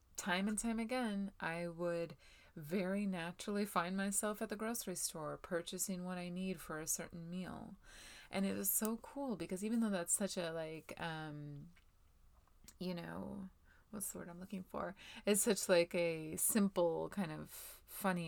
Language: English